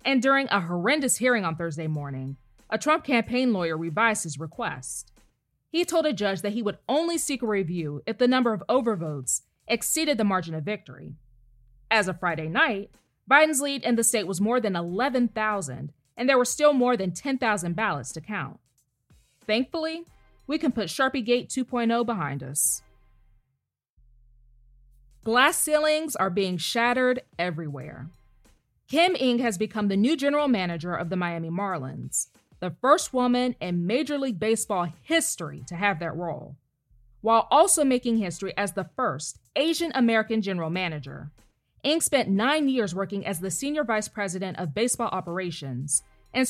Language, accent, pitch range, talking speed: English, American, 160-250 Hz, 155 wpm